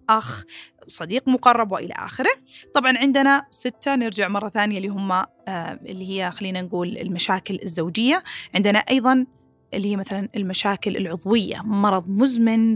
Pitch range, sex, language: 195-265 Hz, female, Arabic